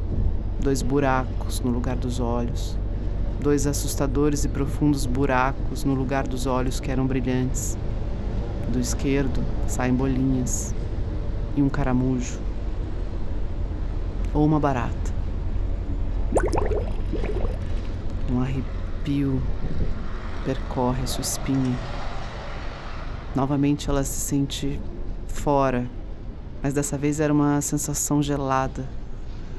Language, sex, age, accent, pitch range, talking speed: Portuguese, female, 40-59, Brazilian, 95-140 Hz, 95 wpm